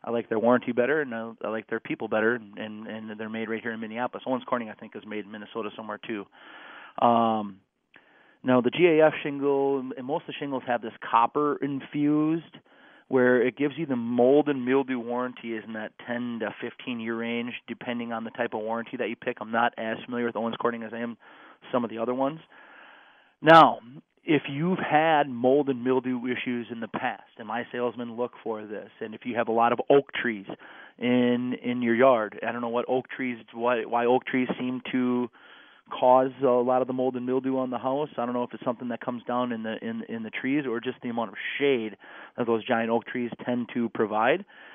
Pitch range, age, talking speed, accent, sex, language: 115-130 Hz, 30-49, 220 wpm, American, male, English